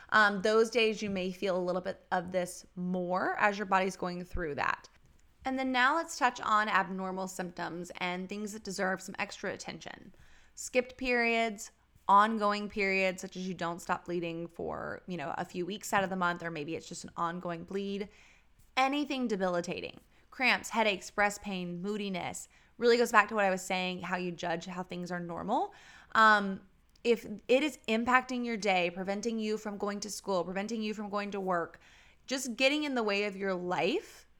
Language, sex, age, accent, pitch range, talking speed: English, female, 20-39, American, 185-225 Hz, 190 wpm